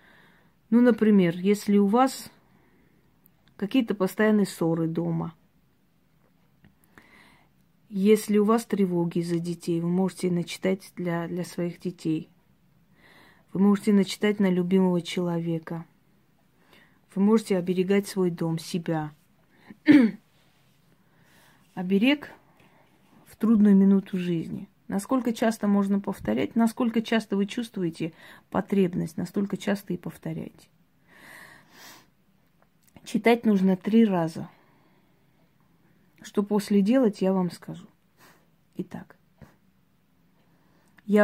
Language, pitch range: Russian, 175-205 Hz